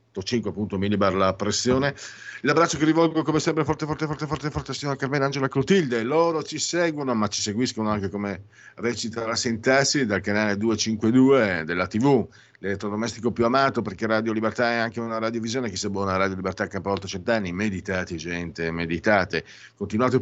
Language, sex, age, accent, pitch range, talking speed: Italian, male, 50-69, native, 95-135 Hz, 175 wpm